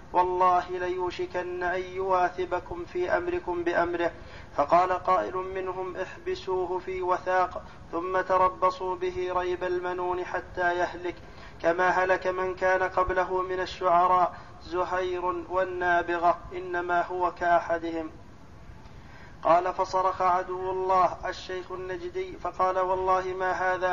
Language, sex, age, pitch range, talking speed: Arabic, male, 40-59, 180-185 Hz, 105 wpm